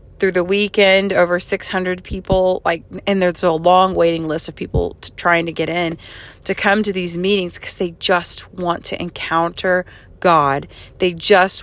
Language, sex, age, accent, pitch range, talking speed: English, female, 30-49, American, 175-215 Hz, 170 wpm